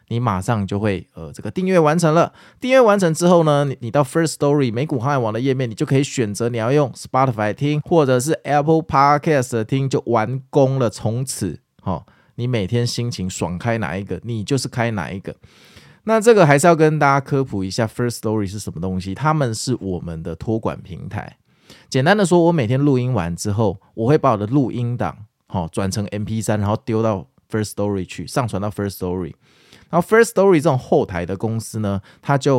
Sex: male